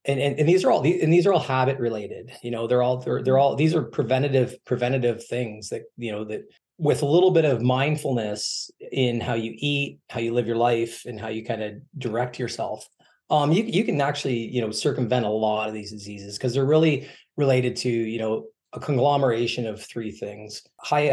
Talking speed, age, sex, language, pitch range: 215 wpm, 20-39, male, English, 110-135 Hz